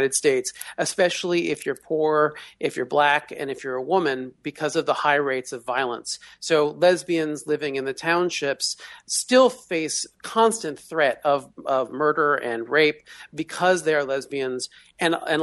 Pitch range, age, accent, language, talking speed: 135-170 Hz, 40-59, American, English, 155 wpm